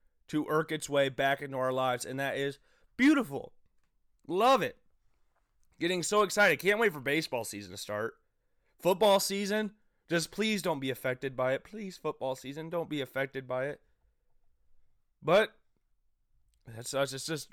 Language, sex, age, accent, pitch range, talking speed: English, male, 30-49, American, 135-195 Hz, 155 wpm